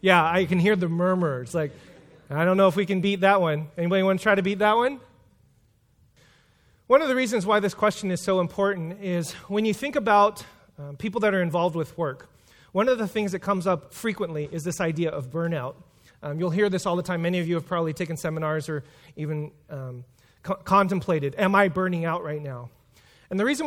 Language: English